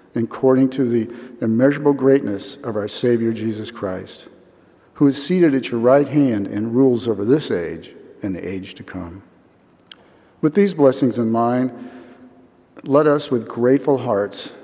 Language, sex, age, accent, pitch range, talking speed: English, male, 50-69, American, 115-135 Hz, 150 wpm